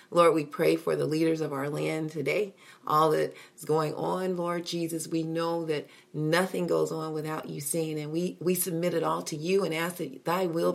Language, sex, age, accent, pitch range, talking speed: English, female, 40-59, American, 155-200 Hz, 220 wpm